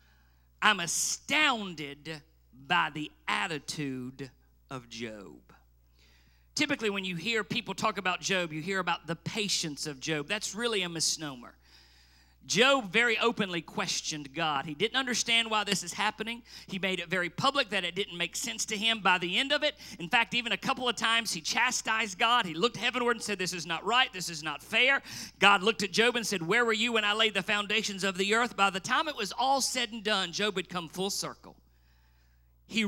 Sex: male